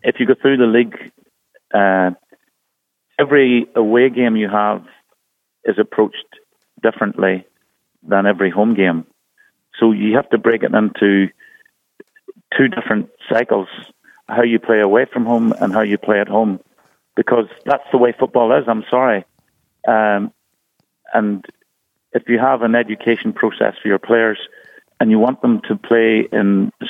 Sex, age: male, 50-69